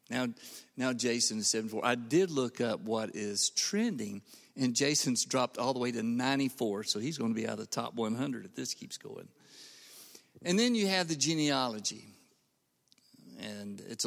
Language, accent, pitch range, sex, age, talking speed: English, American, 115-155 Hz, male, 50-69, 185 wpm